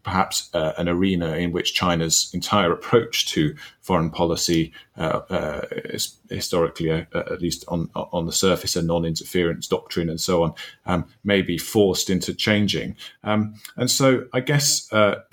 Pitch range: 85-100 Hz